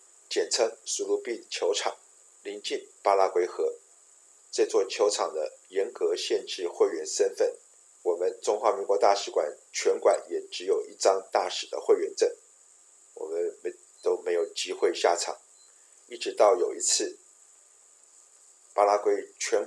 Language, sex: Chinese, male